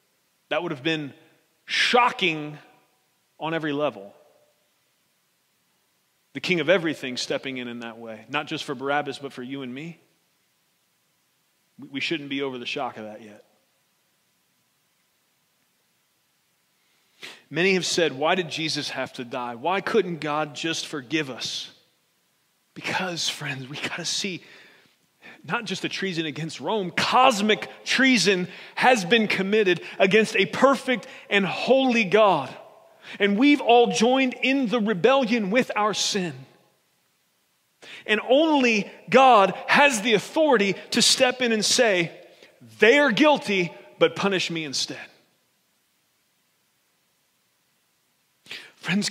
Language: English